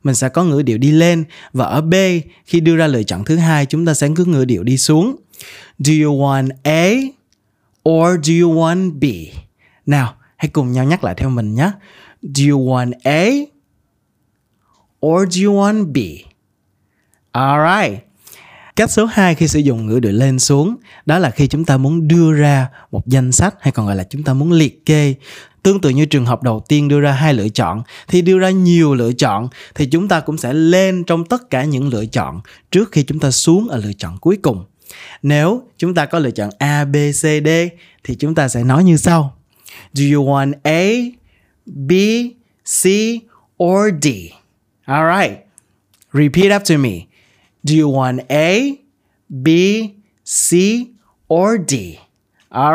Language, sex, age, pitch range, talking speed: Vietnamese, male, 20-39, 130-175 Hz, 185 wpm